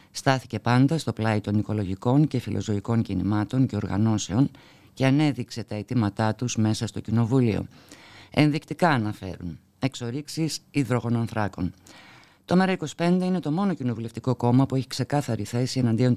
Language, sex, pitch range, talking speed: Greek, female, 105-130 Hz, 130 wpm